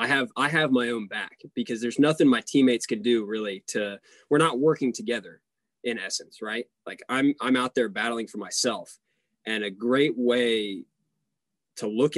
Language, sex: English, male